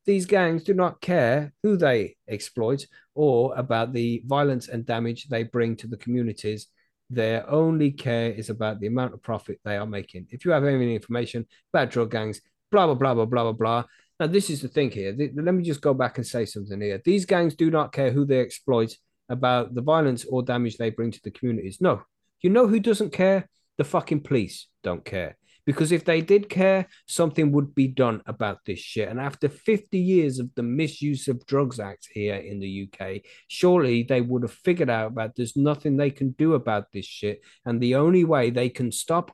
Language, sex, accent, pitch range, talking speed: English, male, British, 115-155 Hz, 210 wpm